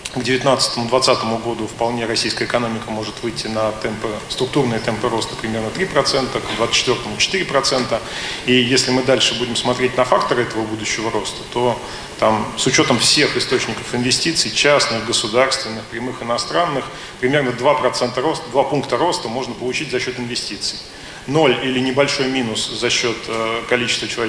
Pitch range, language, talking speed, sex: 115-130 Hz, Russian, 145 wpm, male